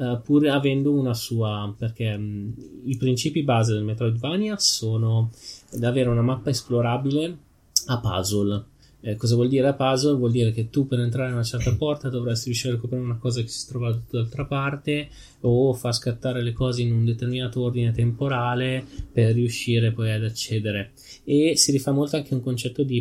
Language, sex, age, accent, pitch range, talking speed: Italian, male, 20-39, native, 115-130 Hz, 185 wpm